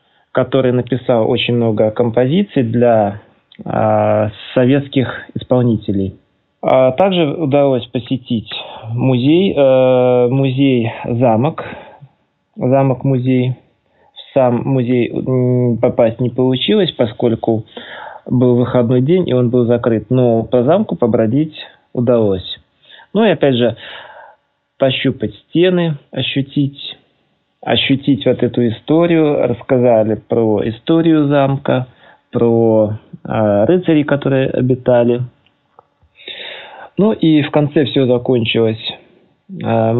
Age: 20-39